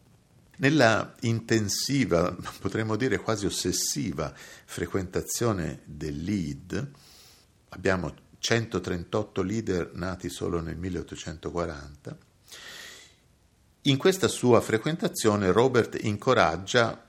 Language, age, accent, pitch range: Italian, 50-69, native, 80-110 Hz